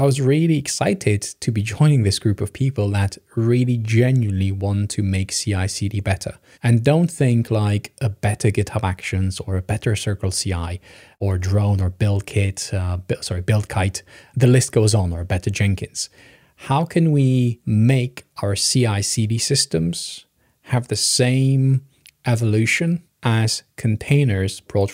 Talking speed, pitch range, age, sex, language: 145 wpm, 100-130 Hz, 20-39, male, English